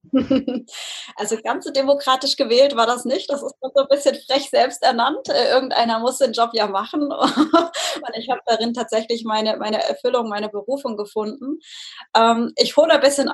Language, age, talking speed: German, 20-39, 160 wpm